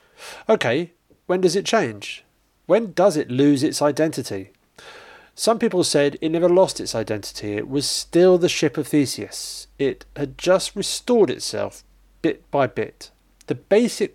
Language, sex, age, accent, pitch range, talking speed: English, male, 40-59, British, 125-185 Hz, 155 wpm